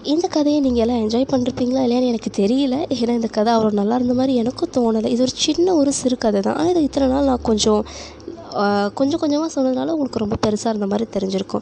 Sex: female